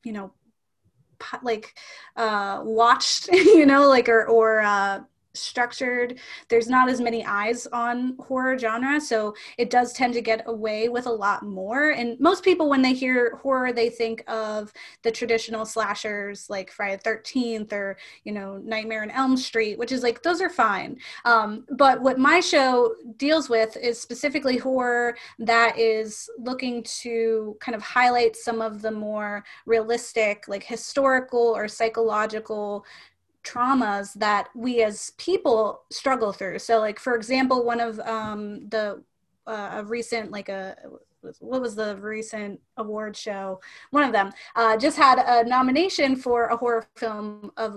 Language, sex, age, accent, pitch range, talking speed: English, female, 20-39, American, 215-245 Hz, 155 wpm